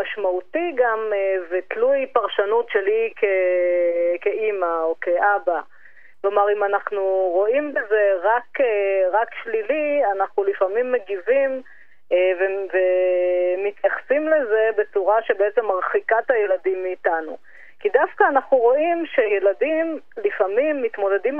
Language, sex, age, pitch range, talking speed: Hebrew, female, 30-49, 195-290 Hz, 100 wpm